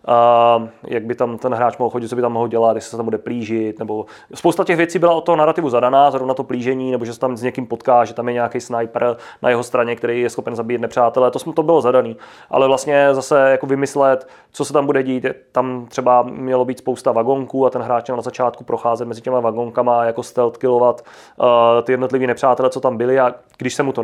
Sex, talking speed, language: male, 230 wpm, Czech